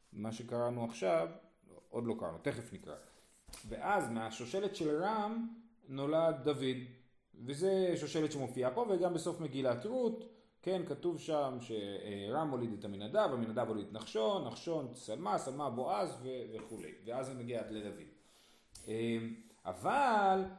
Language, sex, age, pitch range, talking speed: Hebrew, male, 40-59, 120-190 Hz, 125 wpm